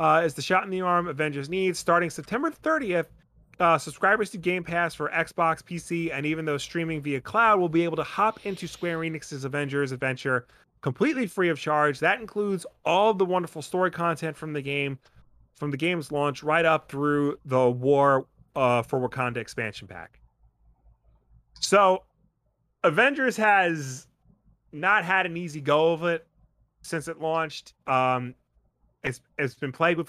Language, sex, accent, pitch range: English, male, American, 125-165 Hz